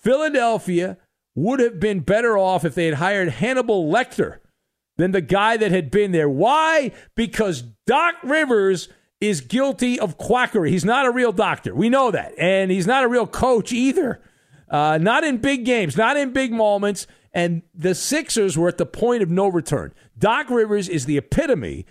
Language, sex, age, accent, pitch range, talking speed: English, male, 50-69, American, 155-230 Hz, 180 wpm